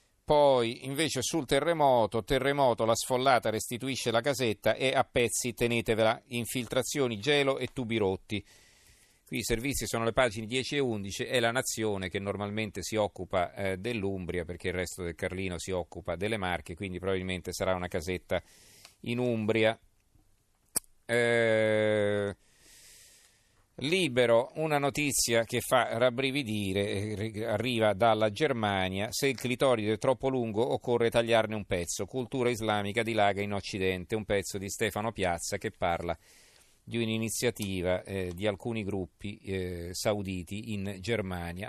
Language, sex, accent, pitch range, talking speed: Italian, male, native, 100-120 Hz, 135 wpm